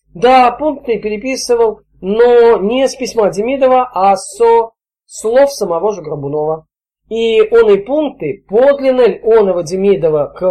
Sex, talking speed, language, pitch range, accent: male, 135 wpm, Russian, 170-265 Hz, native